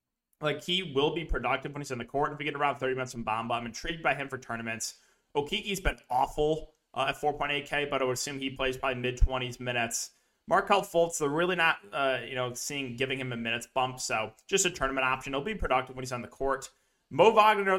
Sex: male